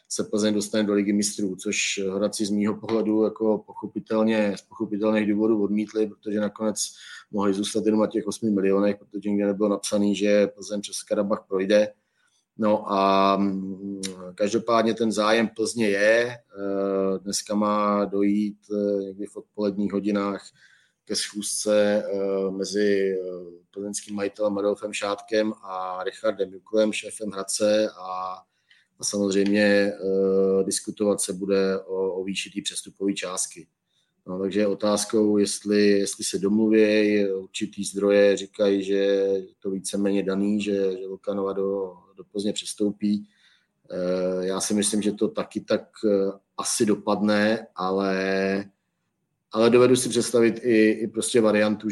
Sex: male